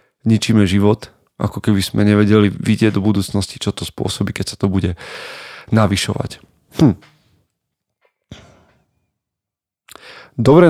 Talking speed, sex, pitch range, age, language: 105 wpm, male, 100-115 Hz, 30-49, Slovak